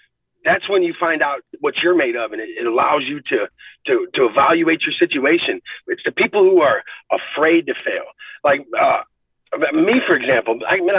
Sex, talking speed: male, 185 wpm